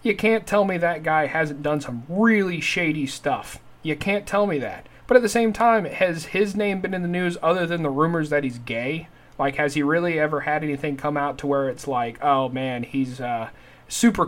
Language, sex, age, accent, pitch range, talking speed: English, male, 30-49, American, 135-190 Hz, 225 wpm